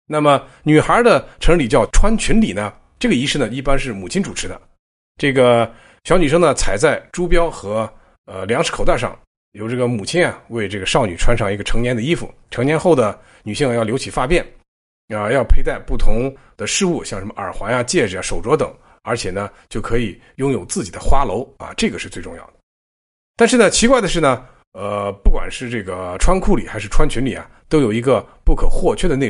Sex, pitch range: male, 105-155 Hz